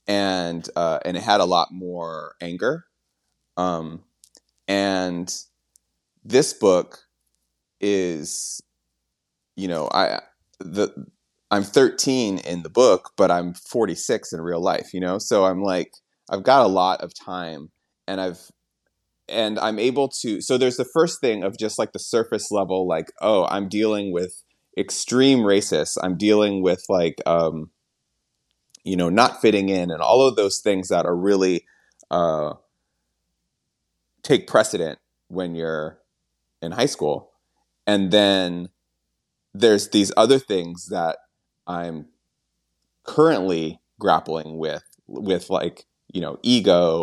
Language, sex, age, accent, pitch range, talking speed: English, male, 30-49, American, 80-100 Hz, 135 wpm